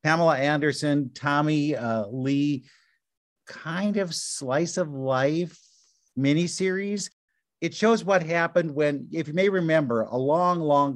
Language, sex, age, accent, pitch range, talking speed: English, male, 50-69, American, 125-165 Hz, 125 wpm